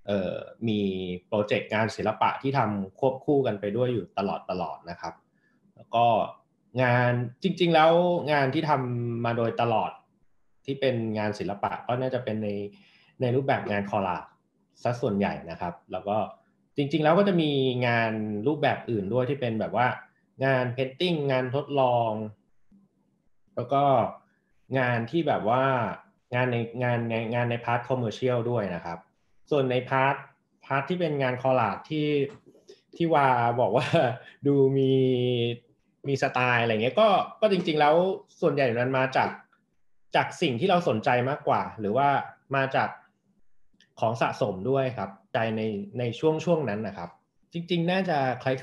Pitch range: 110-140 Hz